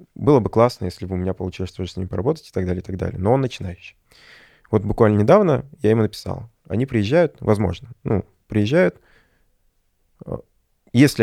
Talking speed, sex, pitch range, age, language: 175 wpm, male, 95-110 Hz, 20-39, Russian